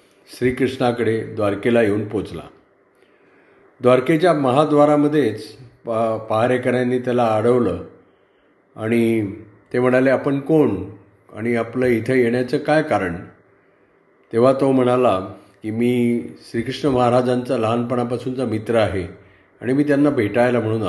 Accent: native